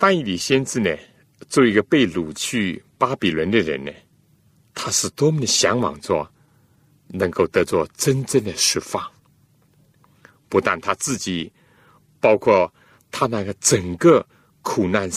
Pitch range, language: 120-155 Hz, Chinese